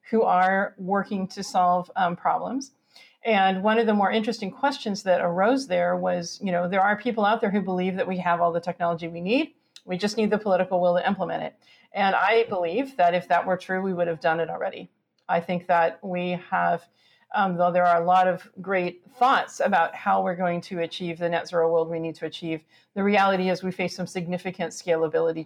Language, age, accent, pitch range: English, 40-59, American, 165-190 Hz